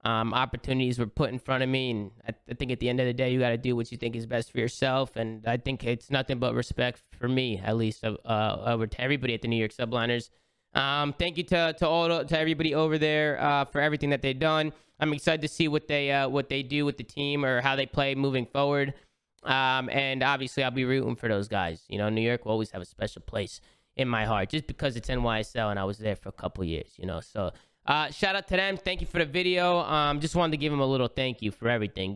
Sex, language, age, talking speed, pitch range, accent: male, English, 20-39, 270 wpm, 120-145 Hz, American